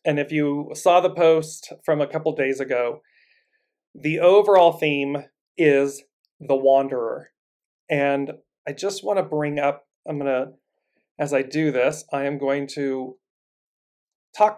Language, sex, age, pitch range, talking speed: English, male, 30-49, 140-180 Hz, 150 wpm